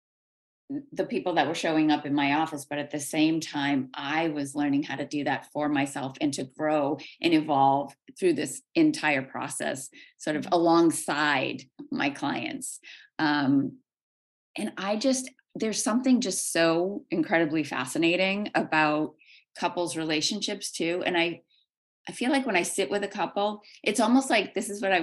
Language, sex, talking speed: English, female, 165 wpm